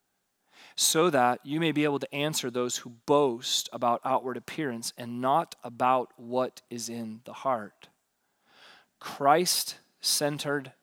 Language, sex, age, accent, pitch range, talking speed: English, male, 30-49, American, 140-190 Hz, 125 wpm